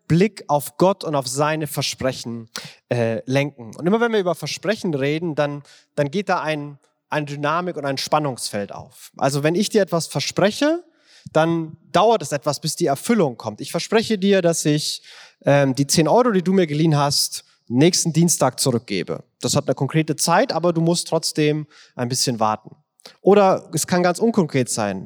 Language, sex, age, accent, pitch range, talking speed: German, male, 30-49, German, 140-185 Hz, 180 wpm